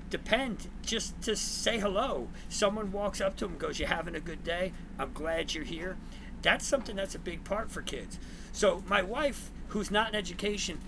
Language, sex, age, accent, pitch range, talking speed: English, male, 50-69, American, 185-215 Hz, 195 wpm